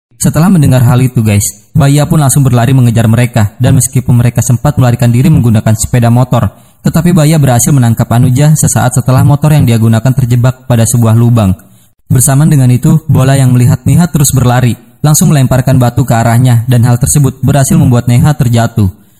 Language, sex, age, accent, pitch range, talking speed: Indonesian, male, 20-39, native, 120-150 Hz, 175 wpm